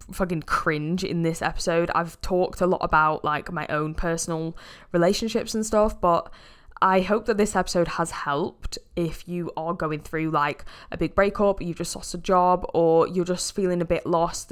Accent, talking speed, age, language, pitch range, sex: British, 190 wpm, 10-29, English, 165-195 Hz, female